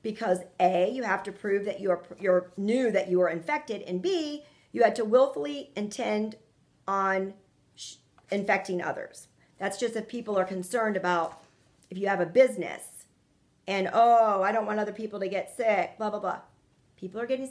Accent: American